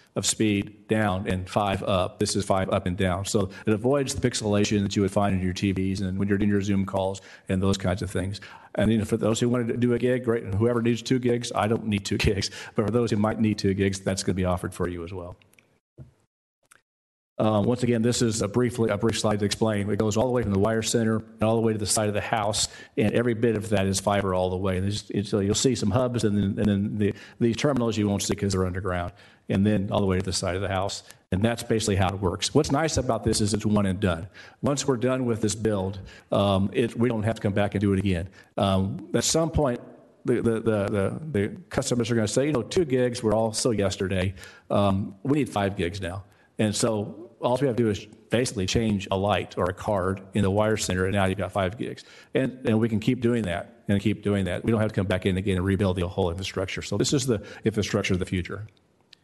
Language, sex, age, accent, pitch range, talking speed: English, male, 40-59, American, 95-115 Hz, 260 wpm